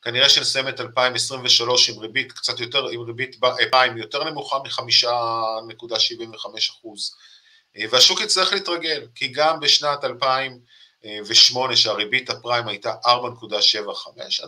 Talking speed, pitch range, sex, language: 100 wpm, 115-145 Hz, male, Hebrew